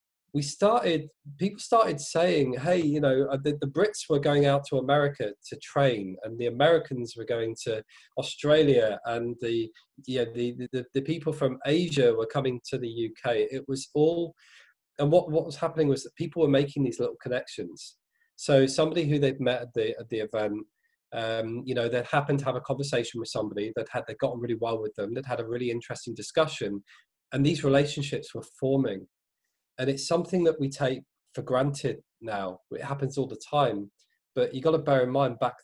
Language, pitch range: English, 115-145 Hz